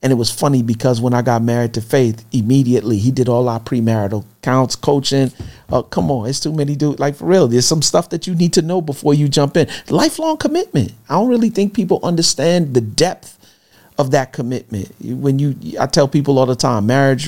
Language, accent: English, American